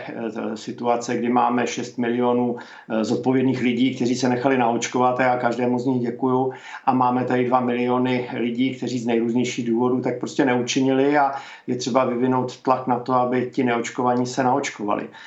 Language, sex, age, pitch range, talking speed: Czech, male, 50-69, 125-135 Hz, 160 wpm